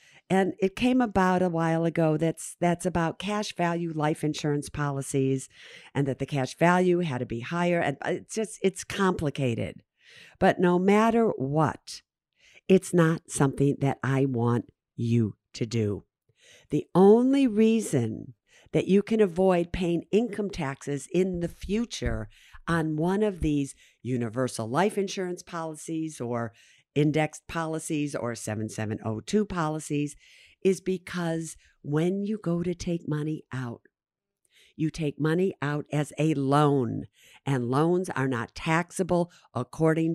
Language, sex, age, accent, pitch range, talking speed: English, female, 50-69, American, 140-180 Hz, 135 wpm